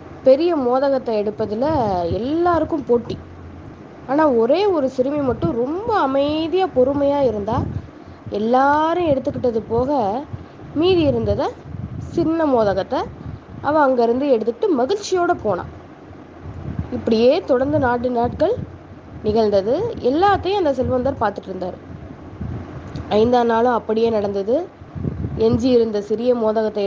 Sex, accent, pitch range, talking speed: female, native, 215-280 Hz, 100 wpm